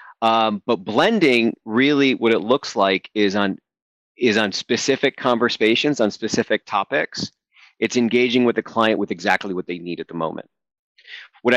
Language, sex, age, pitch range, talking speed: English, male, 40-59, 105-130 Hz, 160 wpm